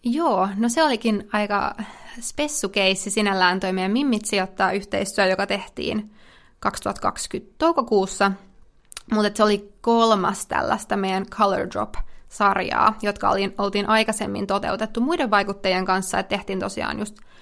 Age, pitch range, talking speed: 20-39, 195-230 Hz, 120 wpm